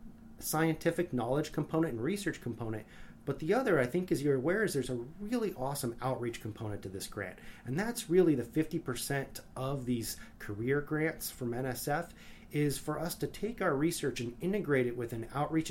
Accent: American